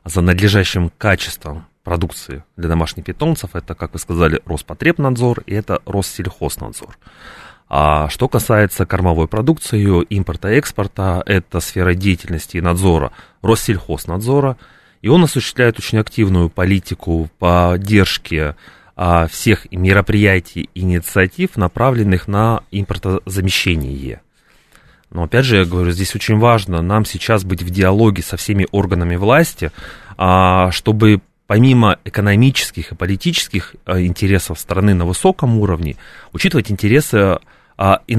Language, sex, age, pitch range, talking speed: Russian, male, 30-49, 90-110 Hz, 110 wpm